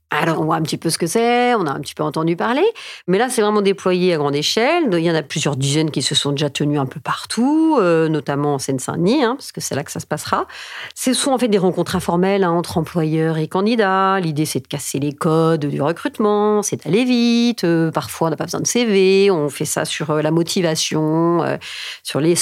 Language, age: French, 50-69